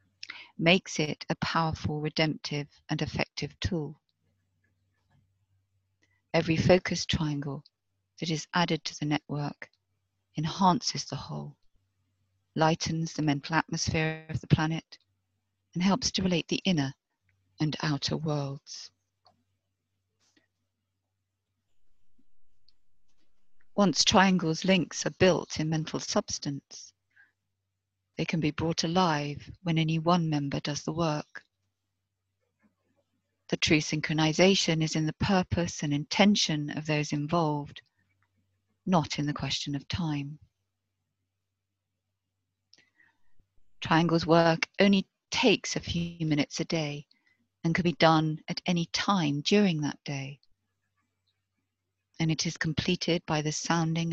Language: English